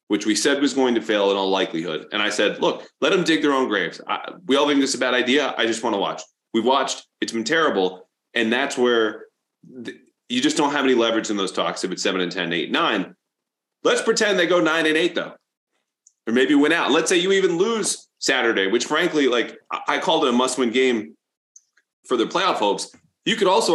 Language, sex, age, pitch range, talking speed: English, male, 30-49, 100-135 Hz, 235 wpm